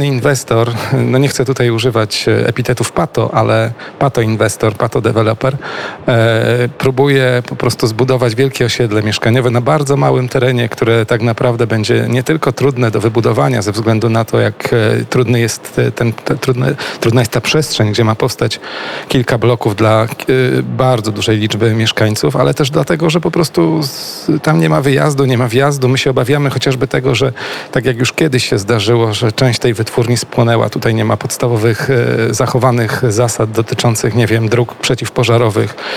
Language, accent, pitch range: Polish, native, 115-135 Hz